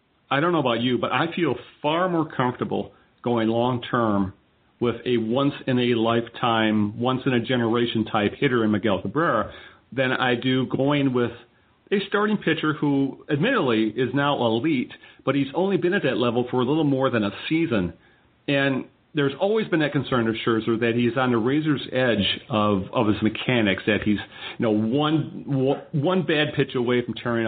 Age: 40-59